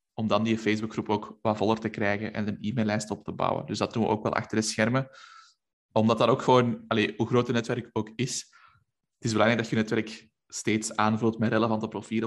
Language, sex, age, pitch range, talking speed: Dutch, male, 20-39, 105-115 Hz, 225 wpm